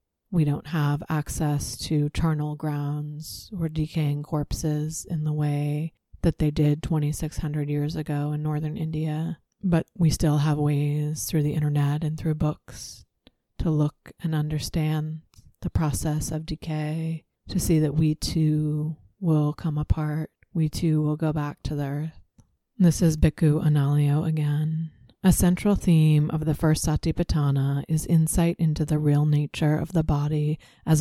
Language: English